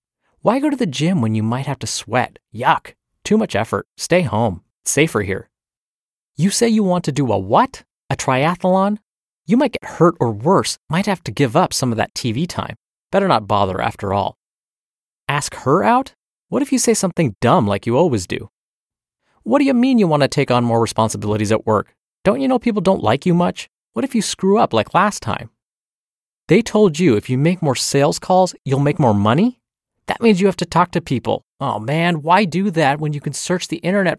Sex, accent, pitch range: male, American, 110-190 Hz